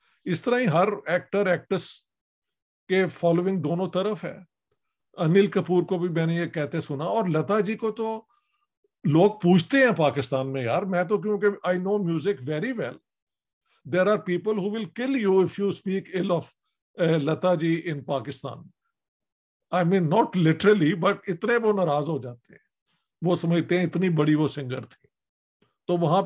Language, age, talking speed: Urdu, 50-69, 140 wpm